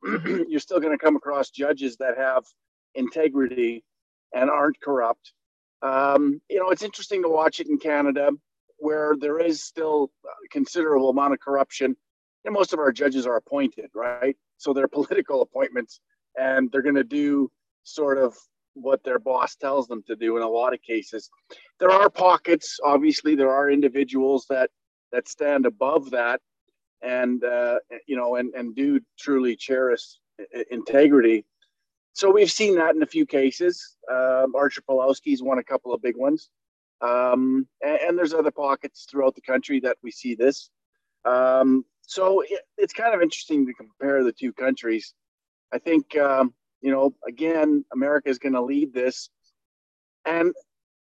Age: 40-59